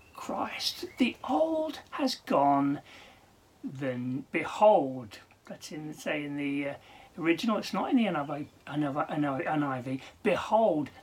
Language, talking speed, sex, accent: English, 135 wpm, male, British